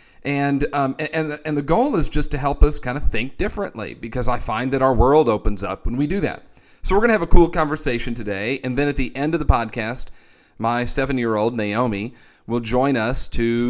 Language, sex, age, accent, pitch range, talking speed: English, male, 40-59, American, 115-145 Hz, 225 wpm